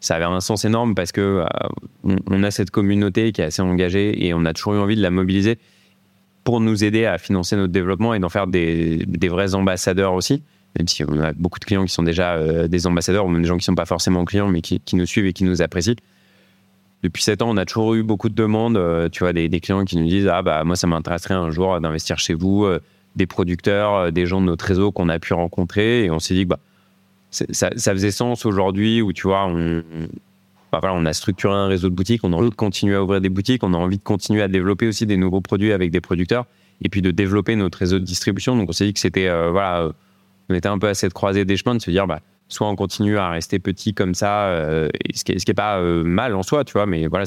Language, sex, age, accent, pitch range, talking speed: French, male, 20-39, French, 90-100 Hz, 275 wpm